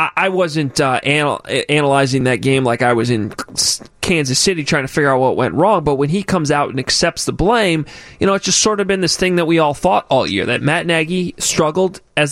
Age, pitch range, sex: 20-39, 140-180 Hz, male